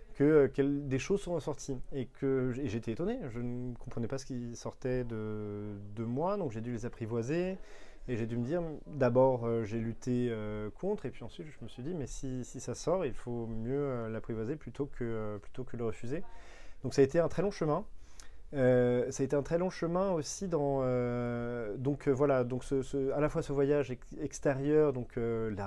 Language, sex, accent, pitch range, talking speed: French, male, French, 120-140 Hz, 210 wpm